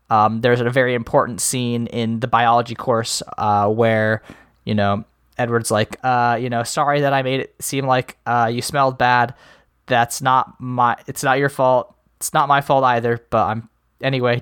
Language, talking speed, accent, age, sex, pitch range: English, 185 wpm, American, 20-39, male, 120-150 Hz